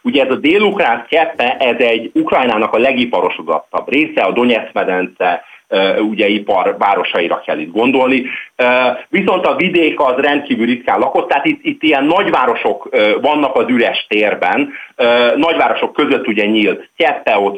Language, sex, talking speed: Hungarian, male, 150 wpm